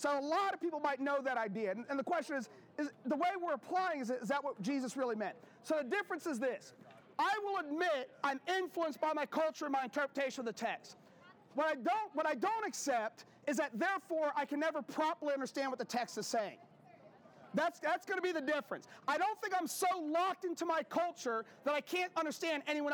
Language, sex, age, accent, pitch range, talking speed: English, male, 40-59, American, 265-335 Hz, 220 wpm